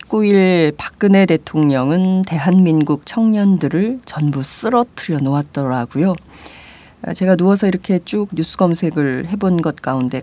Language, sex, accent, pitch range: Korean, female, native, 145-190 Hz